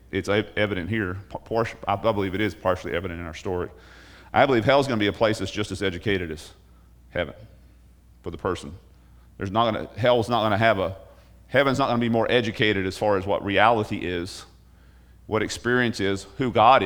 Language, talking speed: English, 205 wpm